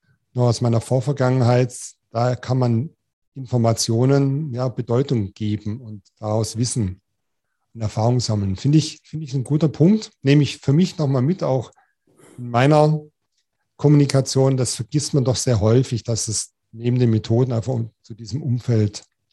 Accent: German